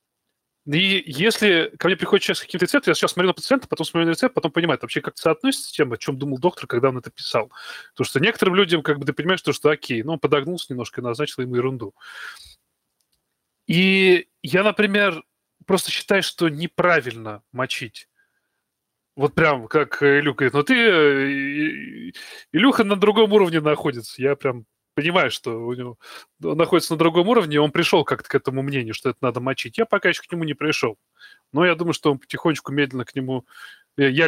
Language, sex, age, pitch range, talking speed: Russian, male, 20-39, 140-185 Hz, 195 wpm